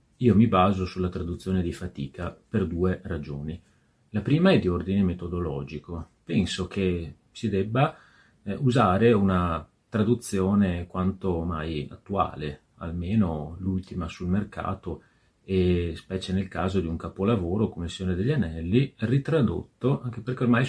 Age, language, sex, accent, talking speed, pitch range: 30-49, Italian, male, native, 130 wpm, 85-105 Hz